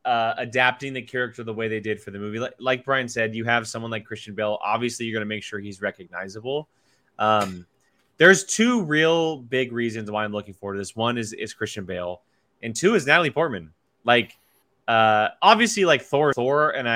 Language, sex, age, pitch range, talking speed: English, male, 20-39, 105-130 Hz, 205 wpm